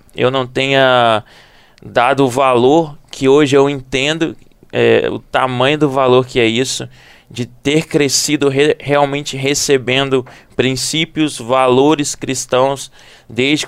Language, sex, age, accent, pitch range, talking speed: Portuguese, male, 20-39, Brazilian, 125-140 Hz, 115 wpm